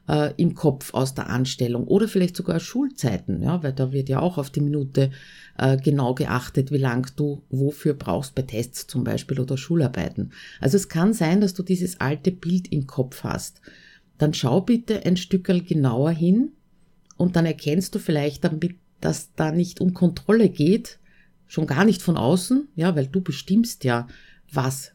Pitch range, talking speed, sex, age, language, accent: 140-180 Hz, 180 wpm, female, 50-69, German, Austrian